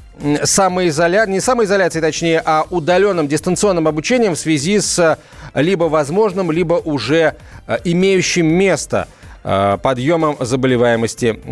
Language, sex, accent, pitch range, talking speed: Russian, male, native, 145-180 Hz, 95 wpm